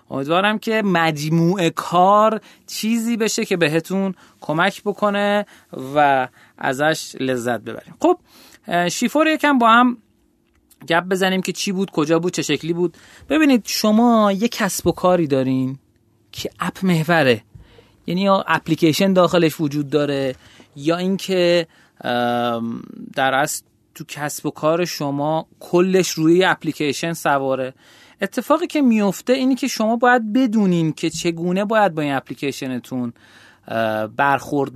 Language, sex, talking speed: Persian, male, 125 wpm